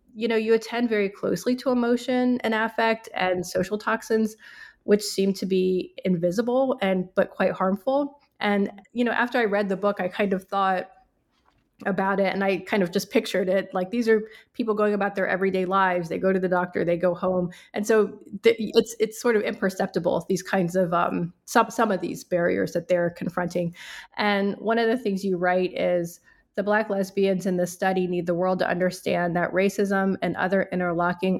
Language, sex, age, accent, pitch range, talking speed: English, female, 30-49, American, 180-210 Hz, 200 wpm